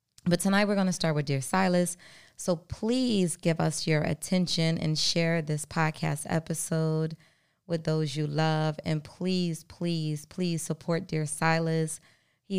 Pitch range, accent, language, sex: 155-175 Hz, American, English, female